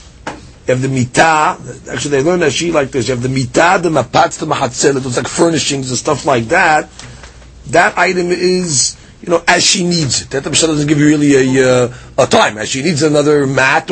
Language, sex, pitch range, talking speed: English, male, 130-180 Hz, 220 wpm